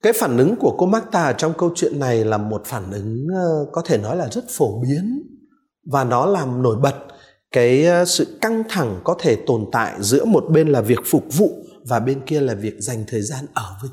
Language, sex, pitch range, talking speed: Vietnamese, male, 115-160 Hz, 230 wpm